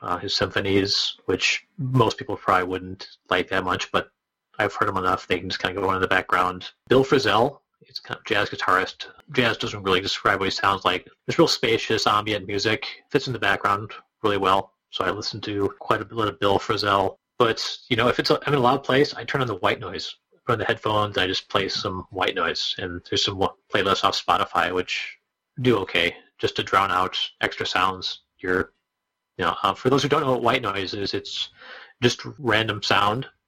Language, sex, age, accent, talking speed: English, male, 30-49, American, 220 wpm